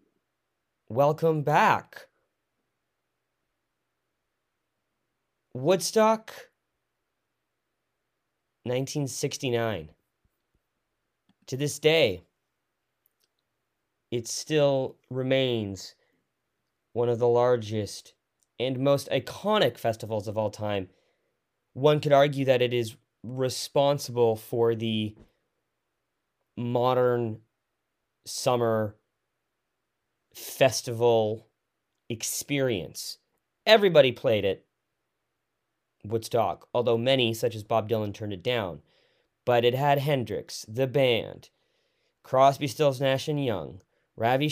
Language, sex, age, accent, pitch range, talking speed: English, male, 20-39, American, 110-140 Hz, 80 wpm